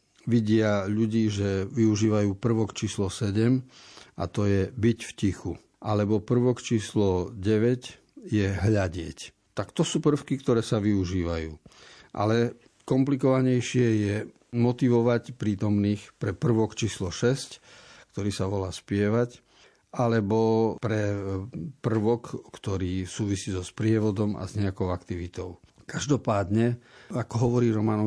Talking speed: 115 wpm